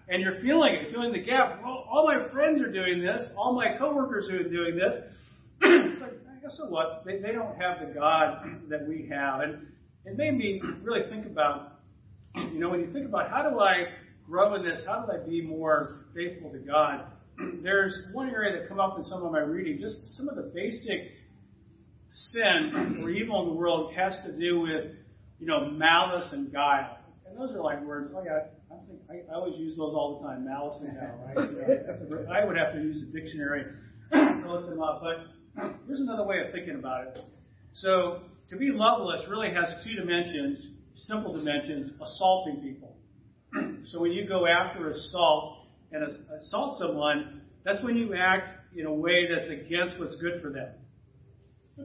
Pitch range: 150-215 Hz